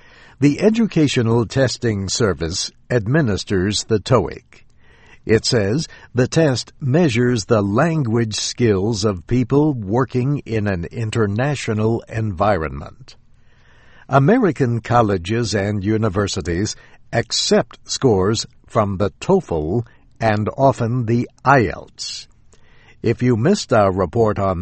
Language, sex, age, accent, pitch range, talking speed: English, male, 60-79, American, 105-135 Hz, 100 wpm